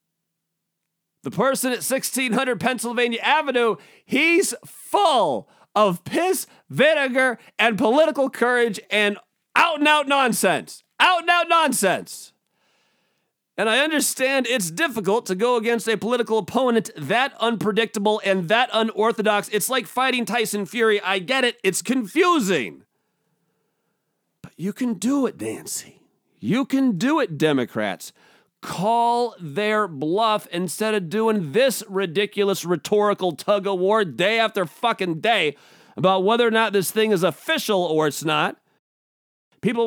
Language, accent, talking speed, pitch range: English, American, 130 wpm, 185-240 Hz